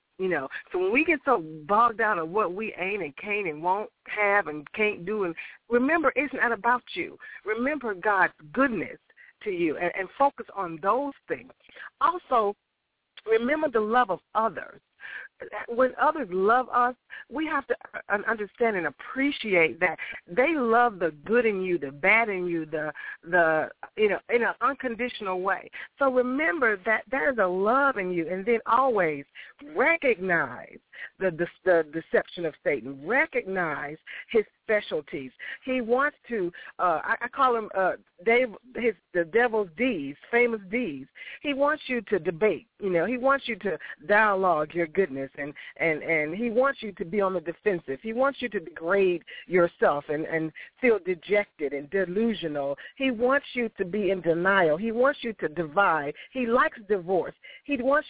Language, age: English, 50-69